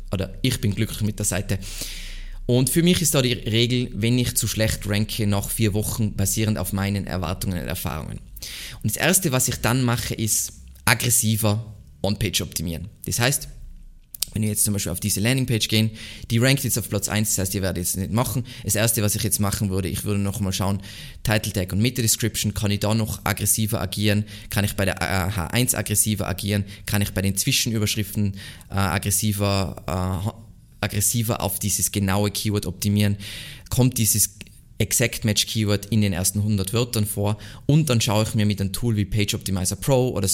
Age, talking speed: 20-39, 190 wpm